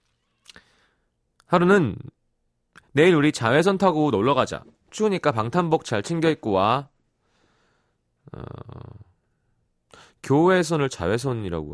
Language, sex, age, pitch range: Korean, male, 40-59, 90-150 Hz